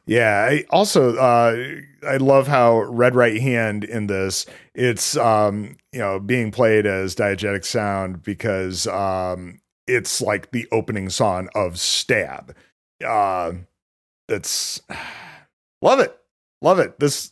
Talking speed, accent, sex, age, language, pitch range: 130 wpm, American, male, 40-59, English, 100-135 Hz